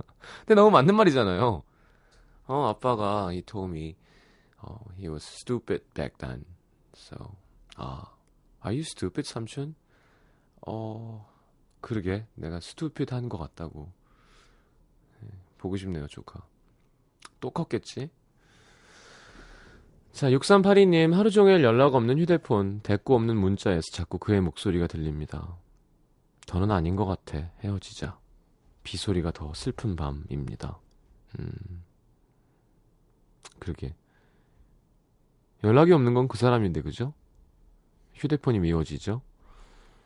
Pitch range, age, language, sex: 85-130 Hz, 30-49, Korean, male